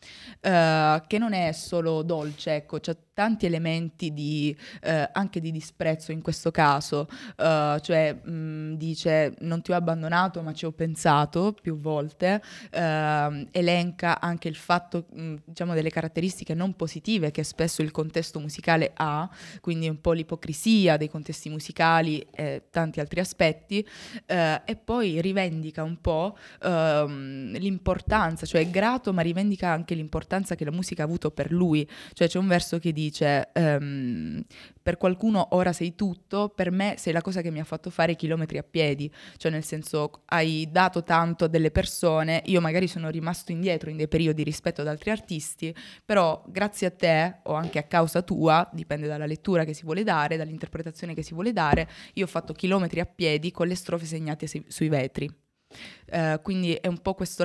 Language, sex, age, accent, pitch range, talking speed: Italian, female, 20-39, native, 155-180 Hz, 170 wpm